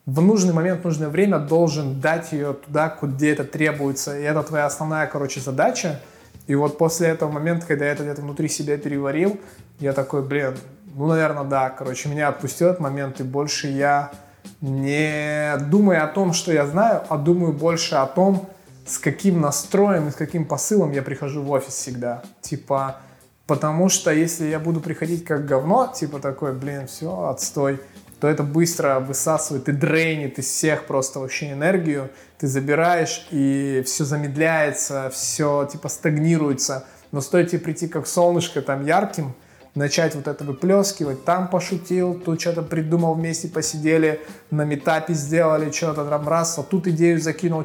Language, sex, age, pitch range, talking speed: Russian, male, 20-39, 145-170 Hz, 160 wpm